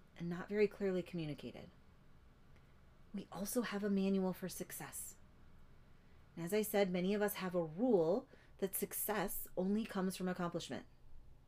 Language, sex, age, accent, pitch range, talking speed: English, female, 30-49, American, 140-200 Hz, 140 wpm